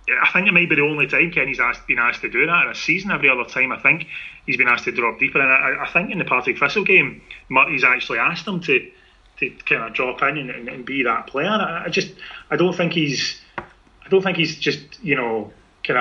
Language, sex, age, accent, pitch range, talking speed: English, male, 30-49, British, 120-175 Hz, 260 wpm